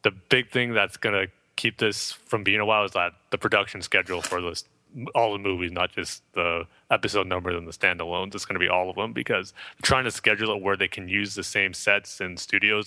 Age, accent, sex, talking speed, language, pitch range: 30-49, American, male, 235 wpm, English, 95-110 Hz